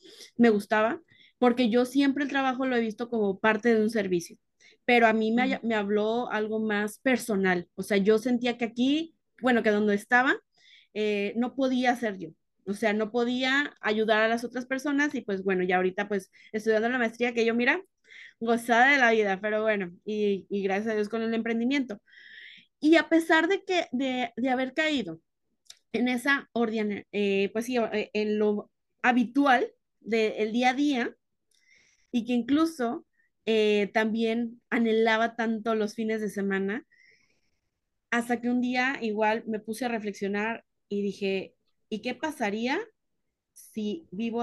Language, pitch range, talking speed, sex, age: Spanish, 210-260 Hz, 165 wpm, female, 20-39